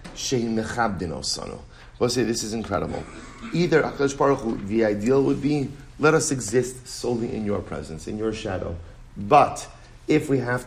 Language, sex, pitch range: English, male, 100-125 Hz